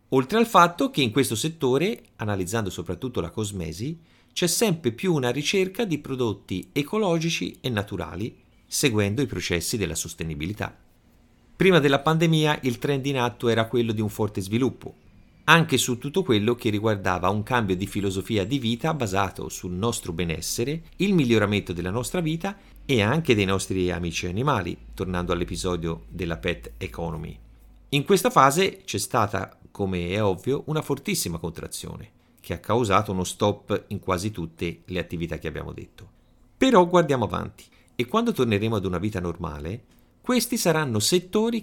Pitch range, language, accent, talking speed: 90-140 Hz, Italian, native, 155 wpm